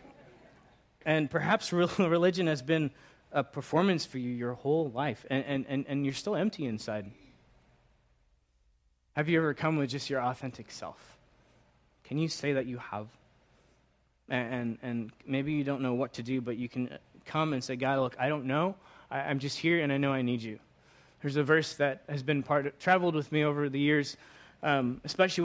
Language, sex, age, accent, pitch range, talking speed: English, male, 20-39, American, 130-160 Hz, 190 wpm